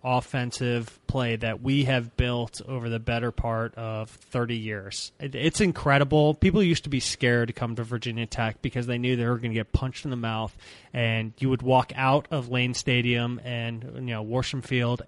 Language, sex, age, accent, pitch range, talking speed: English, male, 20-39, American, 120-140 Hz, 200 wpm